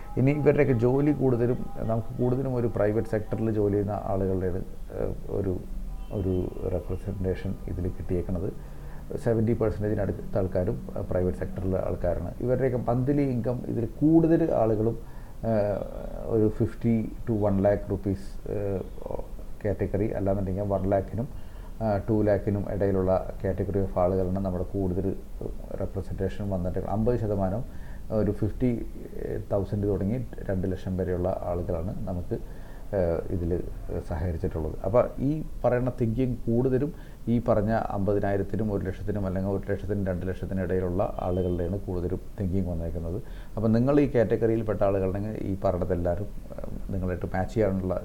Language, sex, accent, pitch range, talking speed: Malayalam, male, native, 95-115 Hz, 115 wpm